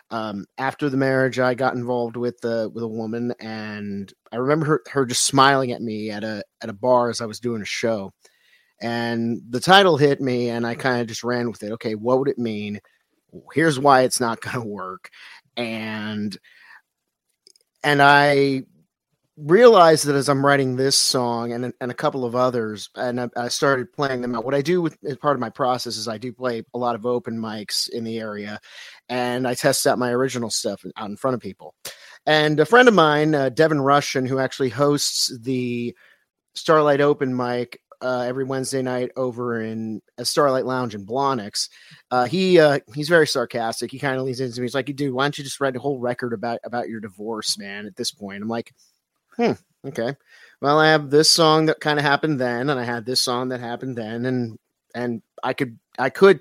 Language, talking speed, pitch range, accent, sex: English, 210 wpm, 115-140 Hz, American, male